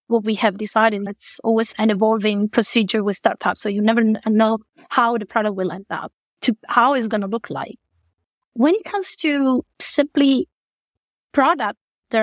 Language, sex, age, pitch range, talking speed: English, female, 20-39, 220-275 Hz, 165 wpm